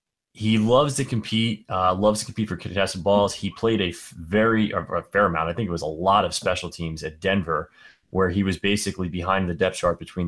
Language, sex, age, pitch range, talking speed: English, male, 20-39, 90-105 Hz, 235 wpm